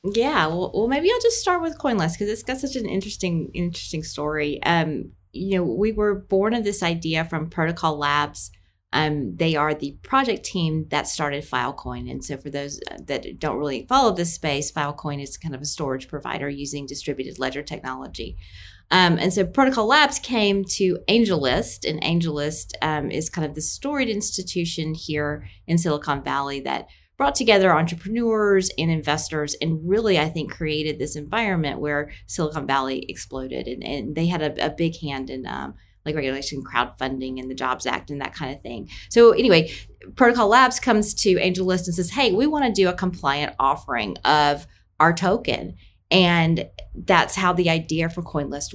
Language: English